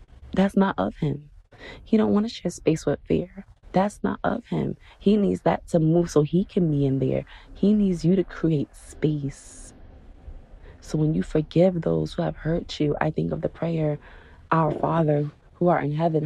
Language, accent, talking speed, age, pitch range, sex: English, American, 195 wpm, 20-39, 150-175 Hz, female